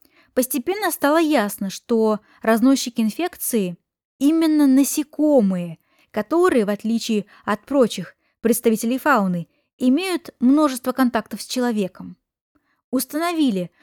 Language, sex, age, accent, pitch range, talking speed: Russian, female, 20-39, native, 215-270 Hz, 90 wpm